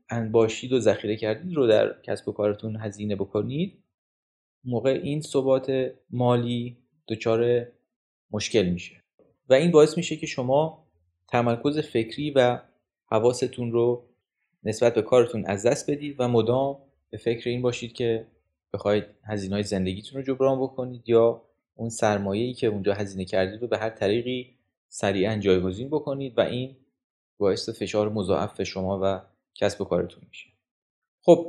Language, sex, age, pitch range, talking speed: Persian, male, 30-49, 105-140 Hz, 140 wpm